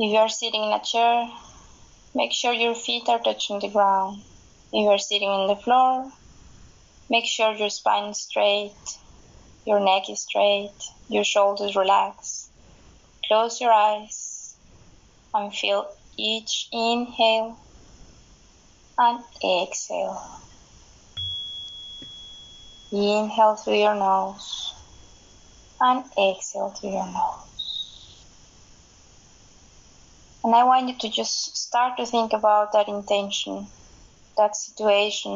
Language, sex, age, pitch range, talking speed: Spanish, female, 20-39, 200-230 Hz, 115 wpm